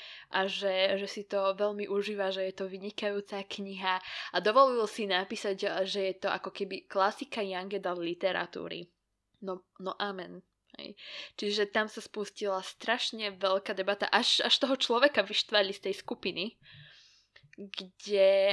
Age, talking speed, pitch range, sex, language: 20-39, 145 wpm, 185-205 Hz, female, Slovak